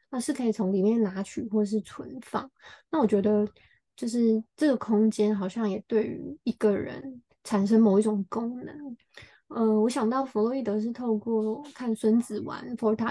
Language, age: Chinese, 20-39